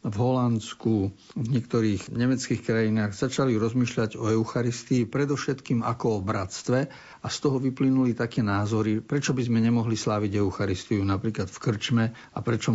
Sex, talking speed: male, 145 wpm